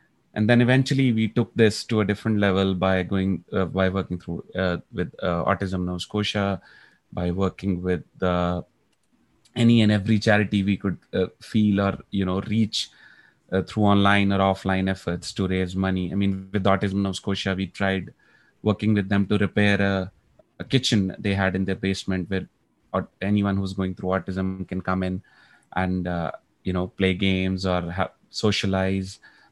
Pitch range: 95-105 Hz